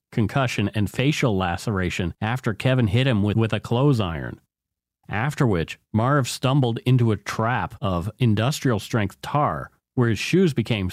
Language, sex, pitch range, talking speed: English, male, 100-130 Hz, 150 wpm